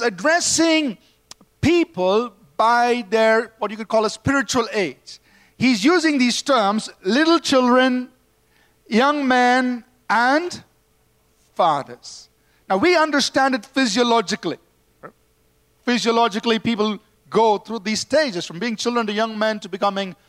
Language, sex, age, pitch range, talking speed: English, male, 50-69, 225-280 Hz, 120 wpm